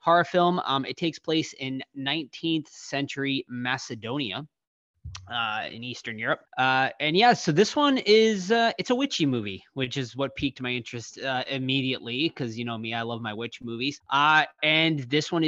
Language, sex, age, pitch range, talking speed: English, male, 20-39, 115-145 Hz, 180 wpm